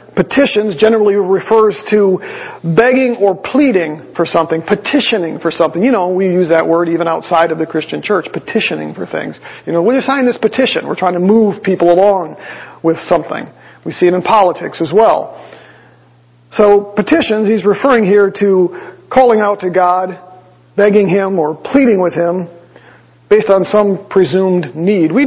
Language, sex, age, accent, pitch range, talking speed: English, male, 40-59, American, 175-215 Hz, 170 wpm